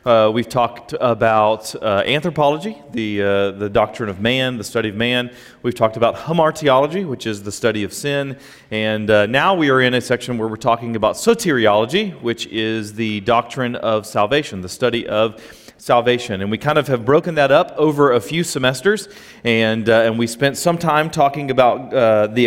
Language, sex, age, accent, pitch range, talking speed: English, male, 30-49, American, 115-145 Hz, 190 wpm